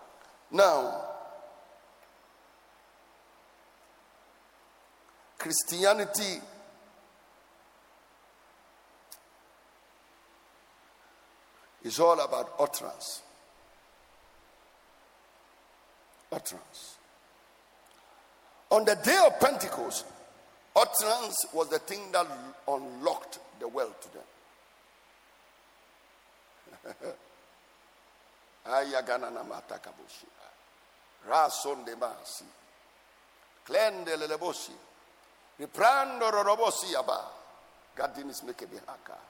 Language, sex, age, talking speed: English, male, 50-69, 35 wpm